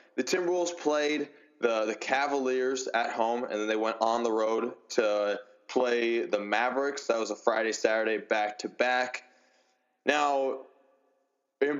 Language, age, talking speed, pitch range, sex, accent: English, 20-39, 135 wpm, 115-135 Hz, male, American